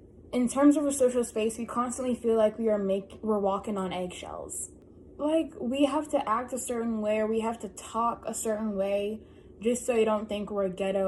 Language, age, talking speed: English, 10-29, 215 wpm